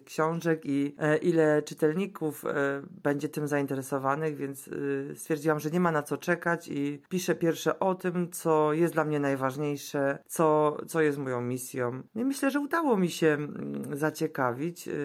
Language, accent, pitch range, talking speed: Polish, native, 140-170 Hz, 145 wpm